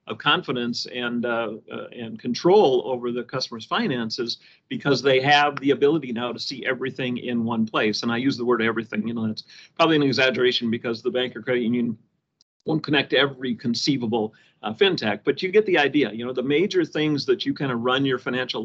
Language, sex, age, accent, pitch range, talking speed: English, male, 50-69, American, 120-165 Hz, 205 wpm